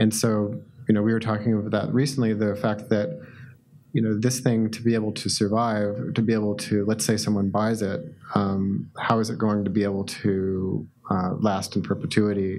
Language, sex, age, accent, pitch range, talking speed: English, male, 30-49, American, 105-115 Hz, 210 wpm